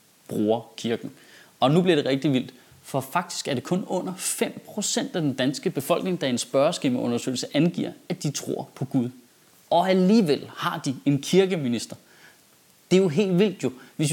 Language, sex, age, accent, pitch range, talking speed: Danish, male, 30-49, native, 130-195 Hz, 180 wpm